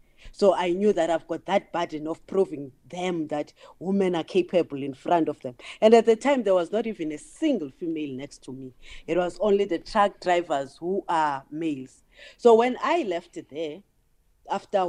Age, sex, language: 40-59, female, English